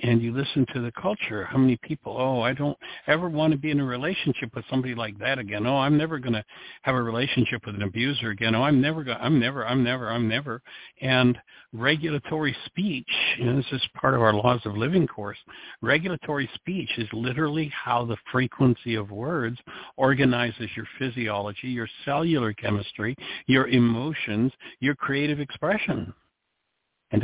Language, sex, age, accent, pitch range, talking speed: English, male, 60-79, American, 120-150 Hz, 175 wpm